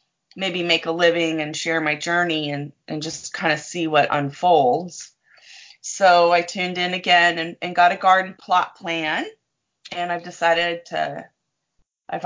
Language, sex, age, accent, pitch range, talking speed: English, female, 30-49, American, 170-205 Hz, 160 wpm